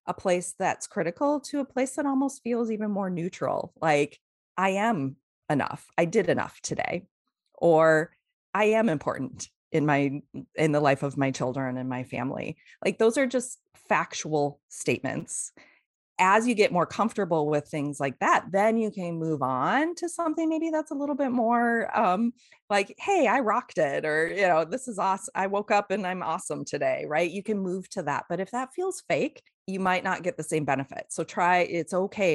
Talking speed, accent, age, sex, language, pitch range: 195 wpm, American, 30-49, female, English, 150-230 Hz